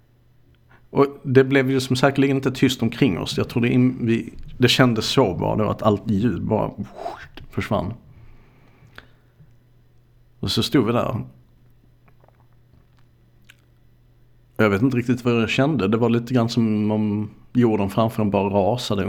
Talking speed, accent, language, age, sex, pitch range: 140 wpm, Norwegian, Swedish, 50-69, male, 110-125 Hz